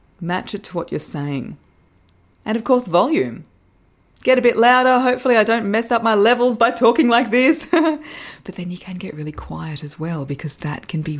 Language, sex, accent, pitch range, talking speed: English, female, Australian, 165-250 Hz, 205 wpm